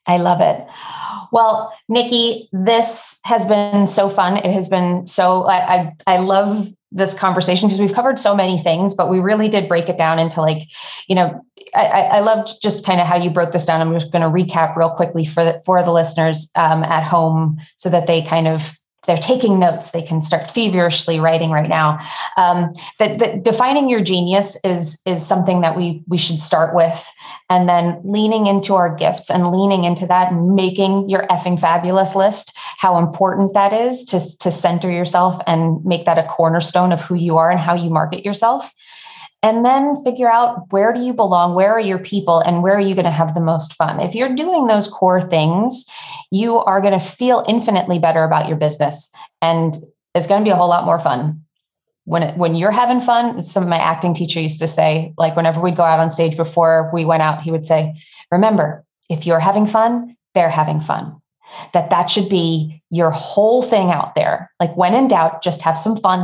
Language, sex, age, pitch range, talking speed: English, female, 20-39, 165-205 Hz, 210 wpm